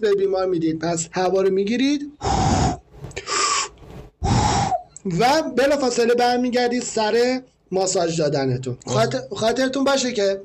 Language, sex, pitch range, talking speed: Persian, male, 185-235 Hz, 105 wpm